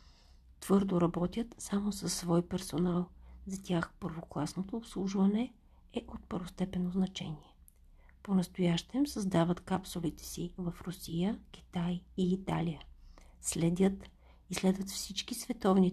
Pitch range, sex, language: 170-195 Hz, female, Bulgarian